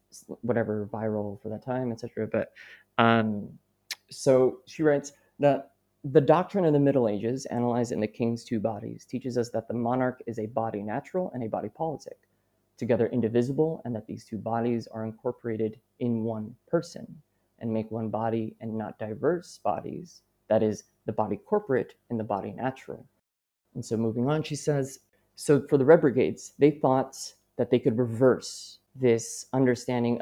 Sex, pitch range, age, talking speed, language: male, 110-130 Hz, 20-39, 165 wpm, English